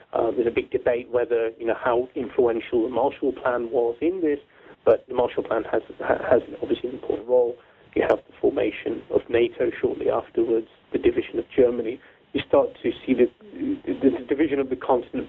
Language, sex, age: English, male, 40-59